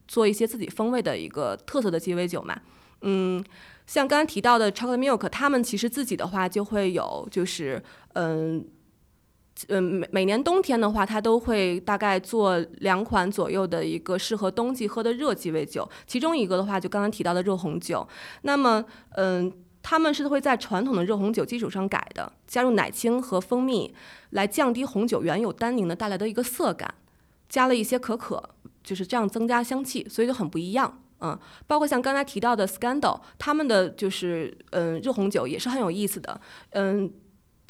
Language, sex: Chinese, female